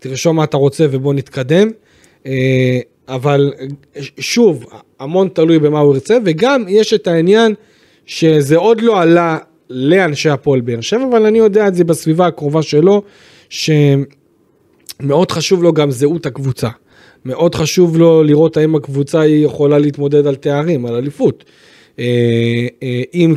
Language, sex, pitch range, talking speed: Hebrew, male, 140-175 Hz, 135 wpm